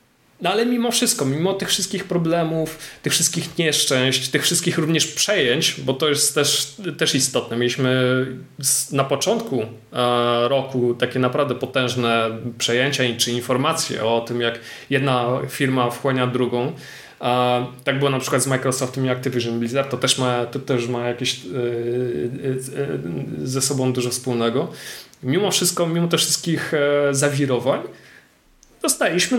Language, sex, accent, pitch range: Polish, male, native, 120-145 Hz